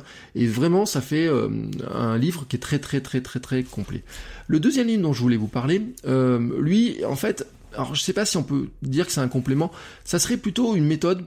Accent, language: French, French